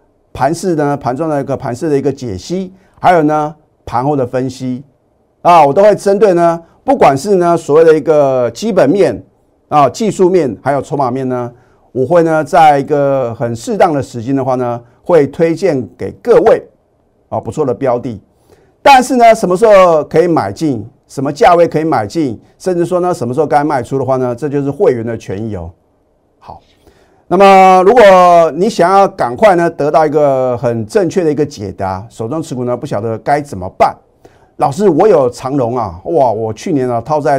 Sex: male